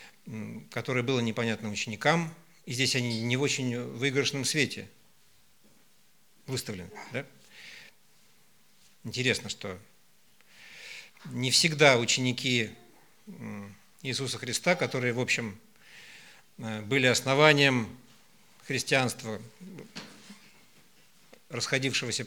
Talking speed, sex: 75 wpm, male